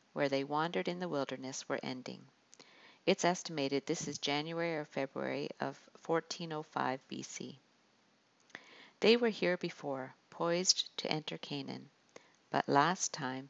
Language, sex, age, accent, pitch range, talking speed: English, female, 50-69, American, 140-175 Hz, 130 wpm